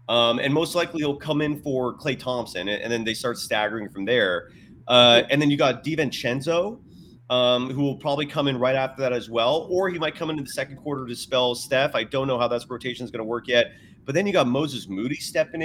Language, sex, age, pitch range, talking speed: English, male, 30-49, 120-155 Hz, 245 wpm